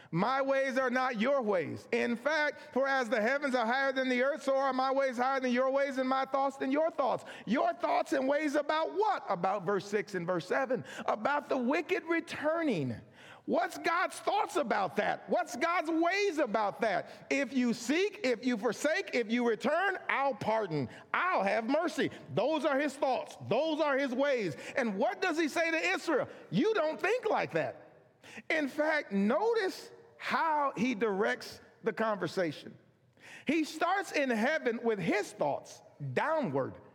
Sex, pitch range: male, 200-310 Hz